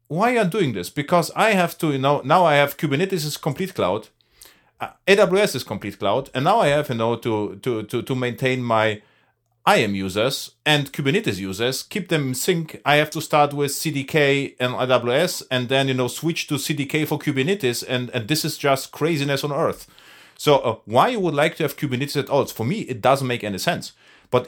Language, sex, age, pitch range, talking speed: English, male, 40-59, 115-150 Hz, 215 wpm